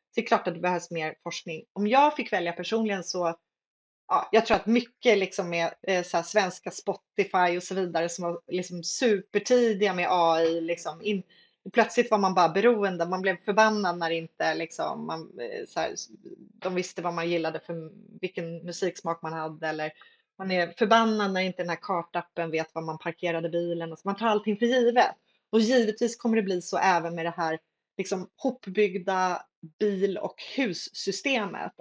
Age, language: 30-49, Swedish